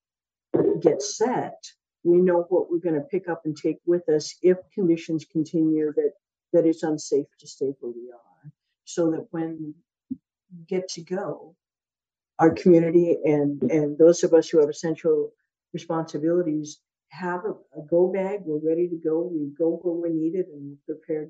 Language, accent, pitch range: English, American, 150-175 Hz